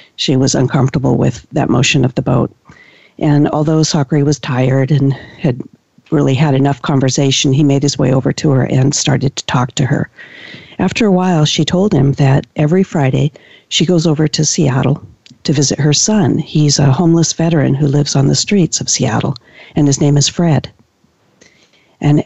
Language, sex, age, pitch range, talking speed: English, female, 50-69, 135-160 Hz, 185 wpm